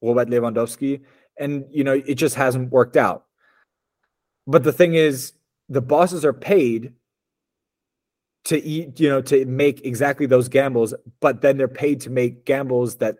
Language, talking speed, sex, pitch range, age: English, 160 wpm, male, 115-140 Hz, 30-49